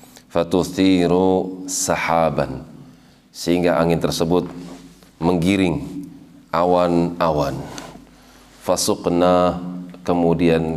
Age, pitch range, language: 40-59, 80-95 Hz, Indonesian